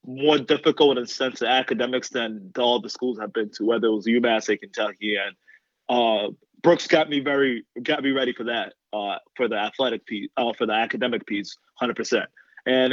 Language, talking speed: English, 200 wpm